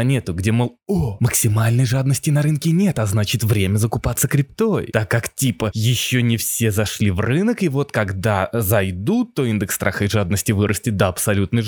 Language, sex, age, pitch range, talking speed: Russian, male, 20-39, 100-145 Hz, 175 wpm